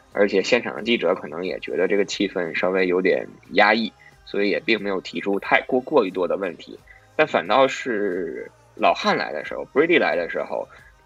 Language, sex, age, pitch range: Chinese, male, 20-39, 100-135 Hz